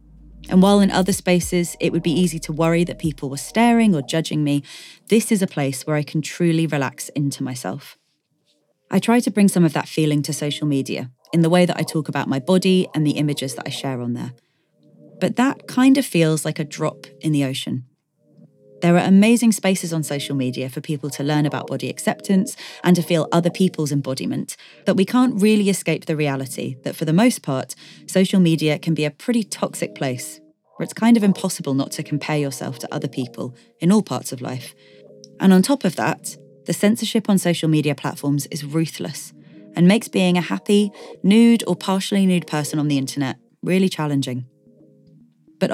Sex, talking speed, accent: female, 200 wpm, British